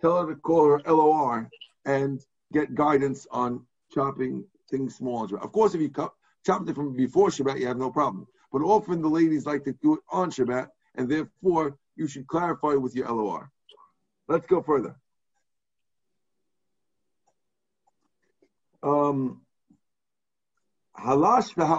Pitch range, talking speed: 150-205 Hz, 145 wpm